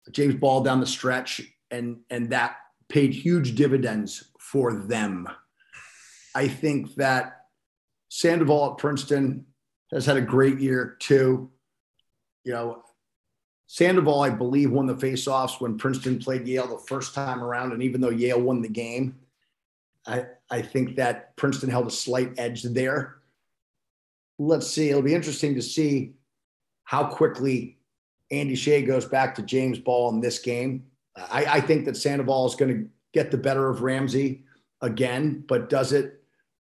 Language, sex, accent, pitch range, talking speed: English, male, American, 120-140 Hz, 155 wpm